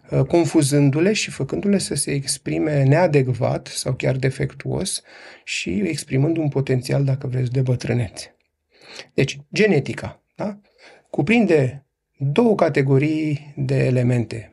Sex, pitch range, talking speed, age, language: male, 135-165 Hz, 105 wpm, 30-49, Romanian